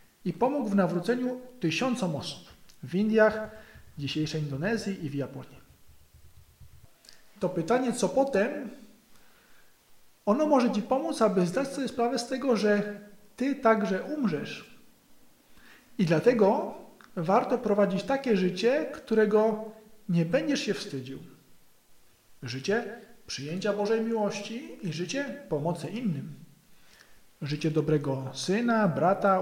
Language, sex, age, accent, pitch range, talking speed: Polish, male, 50-69, native, 160-225 Hz, 110 wpm